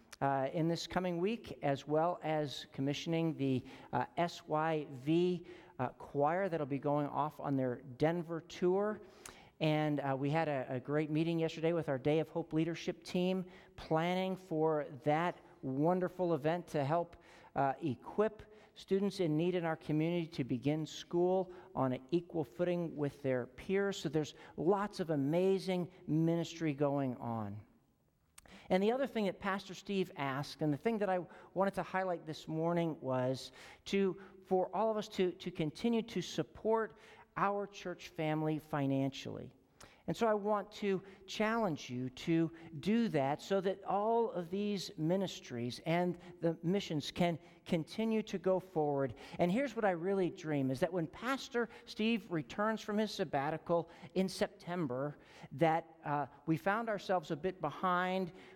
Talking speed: 160 wpm